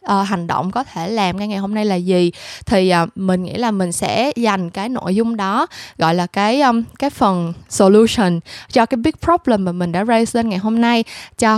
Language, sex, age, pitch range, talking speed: Vietnamese, female, 10-29, 185-245 Hz, 230 wpm